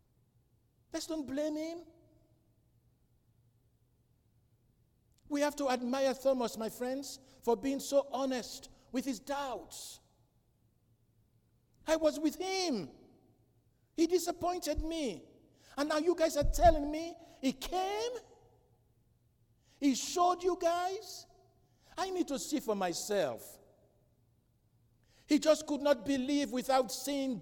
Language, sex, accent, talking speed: English, male, Nigerian, 110 wpm